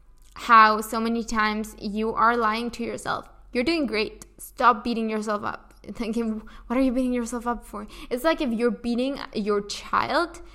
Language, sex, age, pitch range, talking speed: English, female, 10-29, 215-245 Hz, 175 wpm